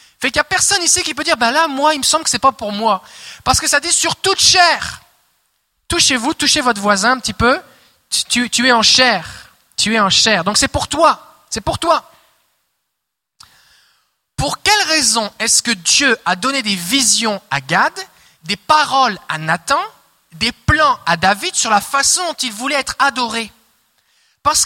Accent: French